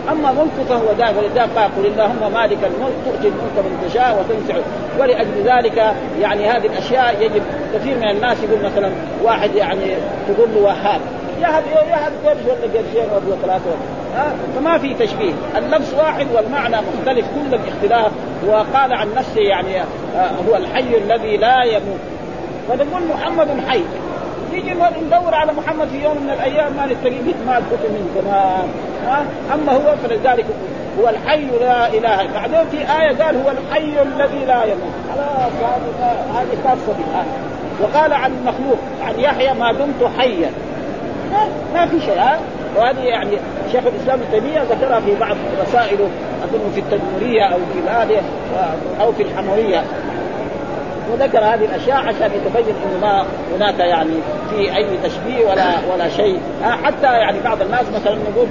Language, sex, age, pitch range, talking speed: Arabic, male, 40-59, 220-305 Hz, 150 wpm